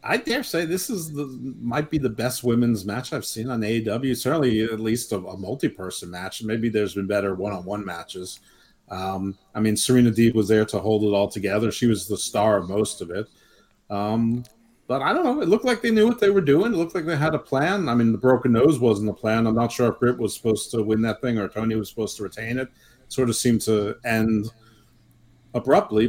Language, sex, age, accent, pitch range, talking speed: English, male, 40-59, American, 105-120 Hz, 240 wpm